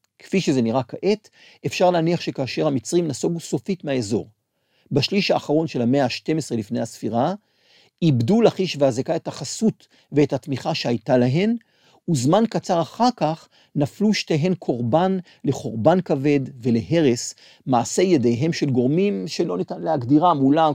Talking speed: 130 wpm